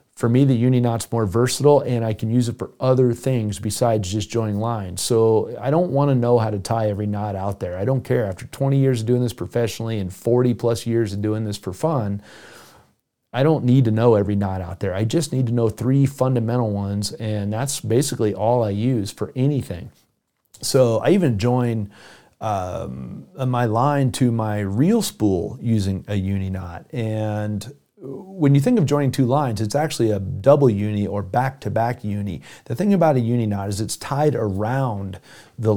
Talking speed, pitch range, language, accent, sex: 200 wpm, 105-130 Hz, English, American, male